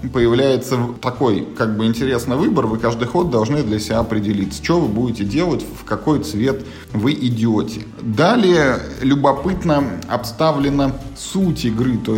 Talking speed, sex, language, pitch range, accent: 140 wpm, male, Russian, 115-140 Hz, native